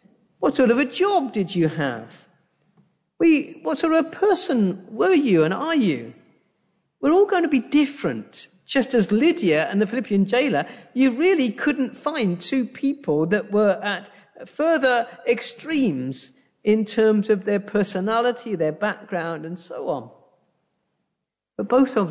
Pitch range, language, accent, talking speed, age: 170-265 Hz, English, British, 150 wpm, 50-69